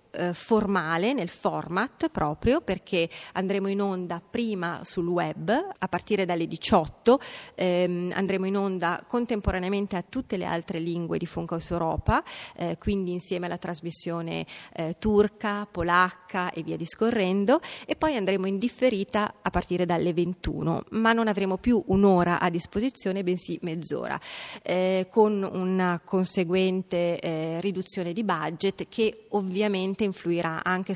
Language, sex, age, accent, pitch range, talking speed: Italian, female, 30-49, native, 175-200 Hz, 135 wpm